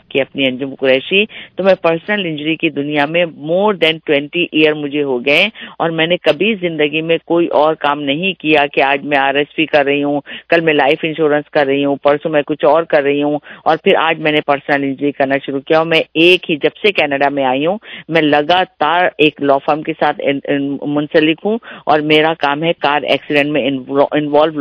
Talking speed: 195 wpm